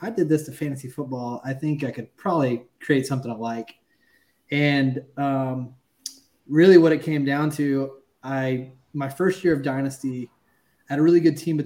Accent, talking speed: American, 185 wpm